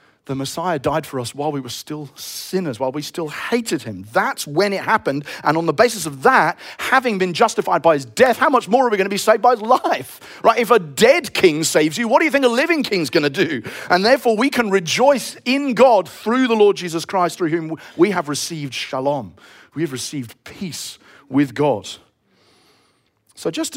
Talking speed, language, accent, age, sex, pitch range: 210 wpm, English, British, 40-59, male, 140-205 Hz